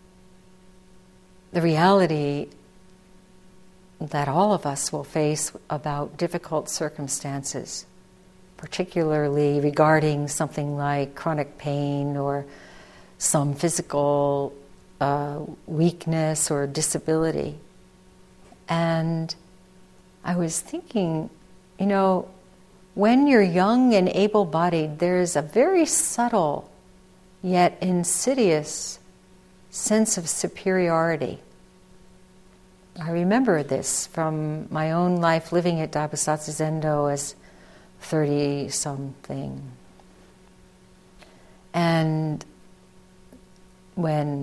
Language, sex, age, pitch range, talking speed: English, female, 50-69, 145-185 Hz, 80 wpm